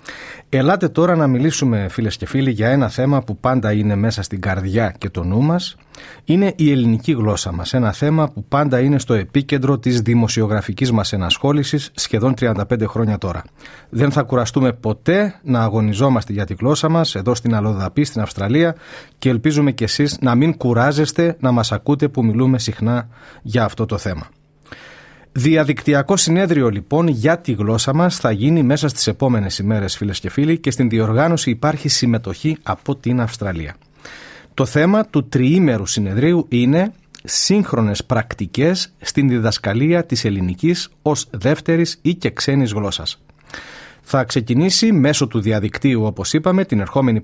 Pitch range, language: 110-150 Hz, Greek